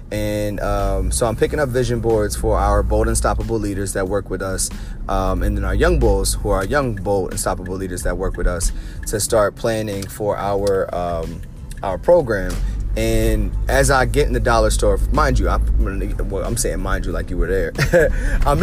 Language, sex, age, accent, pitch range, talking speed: English, male, 30-49, American, 95-120 Hz, 205 wpm